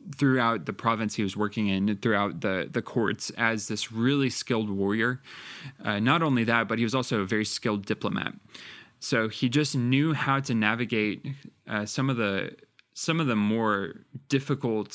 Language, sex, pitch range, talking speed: English, male, 105-125 Hz, 175 wpm